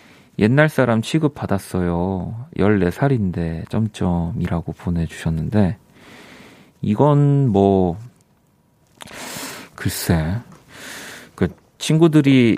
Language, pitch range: Korean, 90-130 Hz